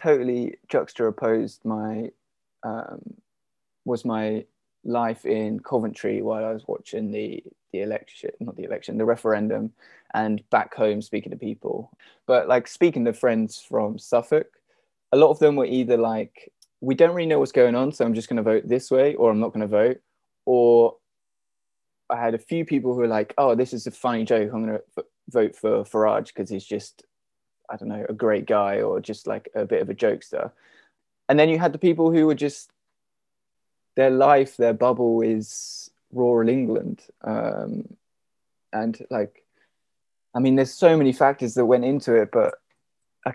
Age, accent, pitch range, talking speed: 20-39, British, 115-140 Hz, 180 wpm